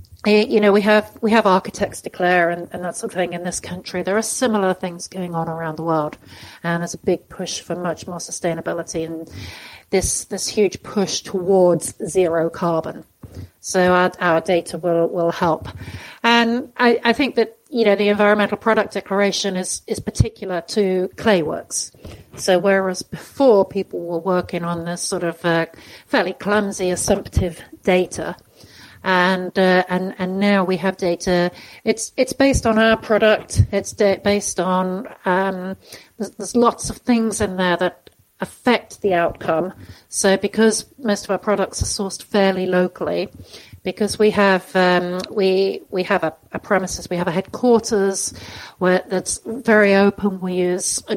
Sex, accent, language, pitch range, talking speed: female, British, English, 175-205 Hz, 165 wpm